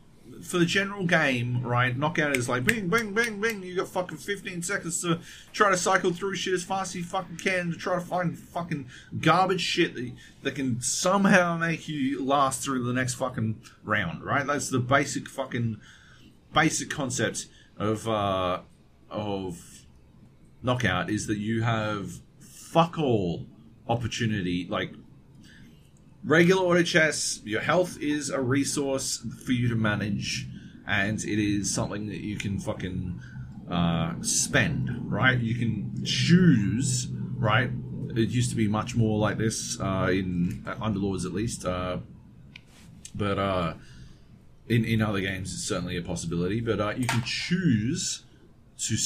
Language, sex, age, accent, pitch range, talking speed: English, male, 30-49, Australian, 110-165 Hz, 150 wpm